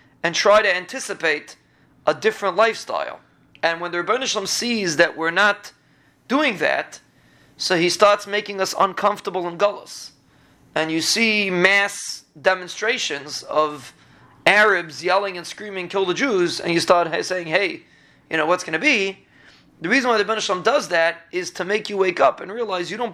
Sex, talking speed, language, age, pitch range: male, 170 wpm, English, 30-49, 175-210 Hz